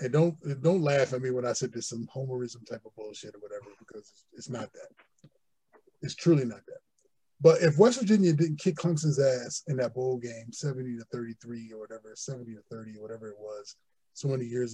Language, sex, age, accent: English, male, 20-39, American